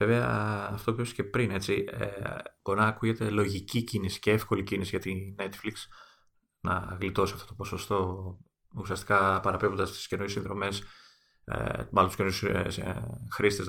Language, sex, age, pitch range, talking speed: Greek, male, 30-49, 95-115 Hz, 145 wpm